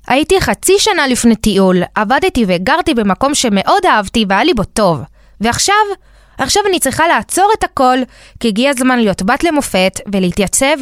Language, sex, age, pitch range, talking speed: Hebrew, female, 20-39, 195-275 Hz, 155 wpm